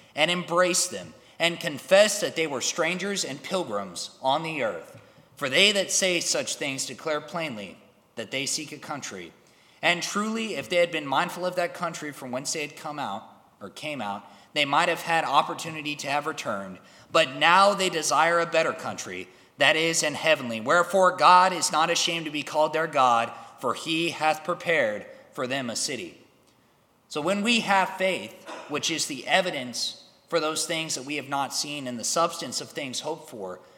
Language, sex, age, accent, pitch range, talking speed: English, male, 30-49, American, 140-180 Hz, 190 wpm